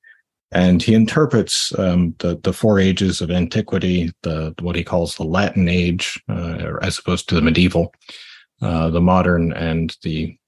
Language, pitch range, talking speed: English, 85-95 Hz, 160 wpm